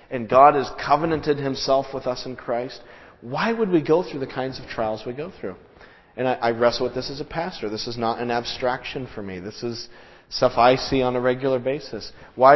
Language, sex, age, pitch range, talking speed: English, male, 40-59, 115-135 Hz, 225 wpm